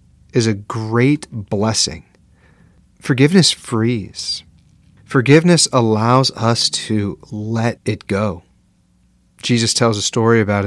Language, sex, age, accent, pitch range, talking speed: English, male, 30-49, American, 105-135 Hz, 100 wpm